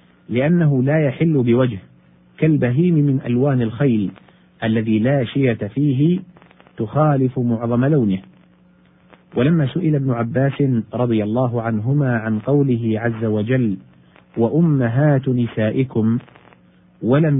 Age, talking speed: 50-69, 100 wpm